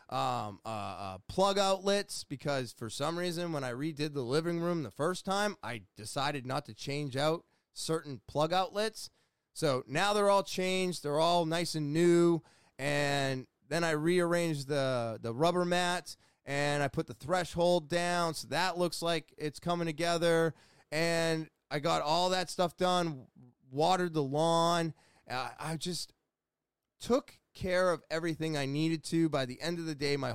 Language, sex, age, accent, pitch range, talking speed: English, male, 20-39, American, 145-180 Hz, 170 wpm